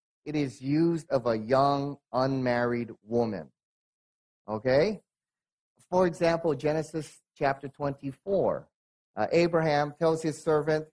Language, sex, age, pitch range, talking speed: English, male, 30-49, 135-180 Hz, 105 wpm